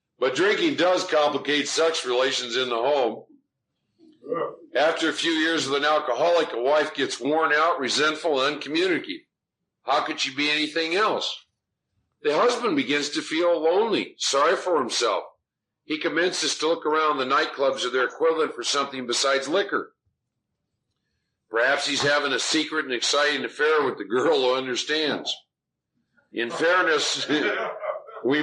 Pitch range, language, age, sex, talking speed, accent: 140-190 Hz, English, 50-69, male, 145 wpm, American